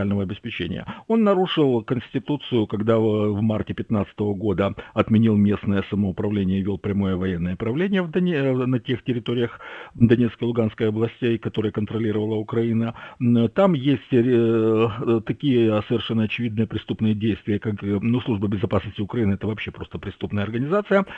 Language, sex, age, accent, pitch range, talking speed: Russian, male, 50-69, native, 100-125 Hz, 120 wpm